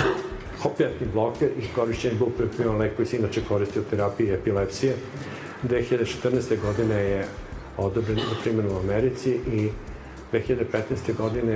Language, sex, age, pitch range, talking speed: Croatian, male, 50-69, 100-115 Hz, 120 wpm